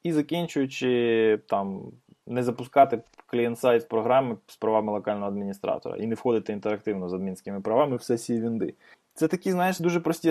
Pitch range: 120-160 Hz